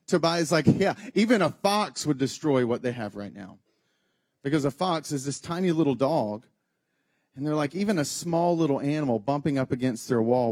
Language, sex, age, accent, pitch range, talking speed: English, male, 40-59, American, 120-165 Hz, 200 wpm